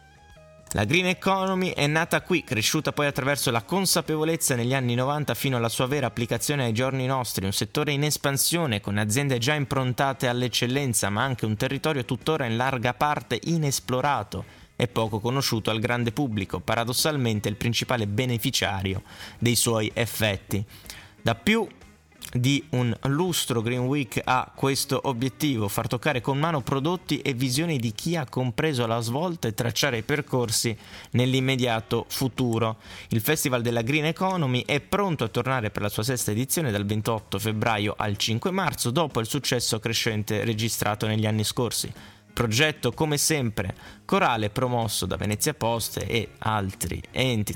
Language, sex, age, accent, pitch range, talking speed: Italian, male, 20-39, native, 110-140 Hz, 155 wpm